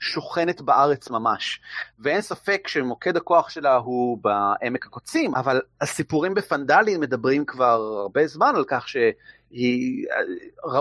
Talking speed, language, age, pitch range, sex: 120 wpm, Hebrew, 30-49, 130-220 Hz, male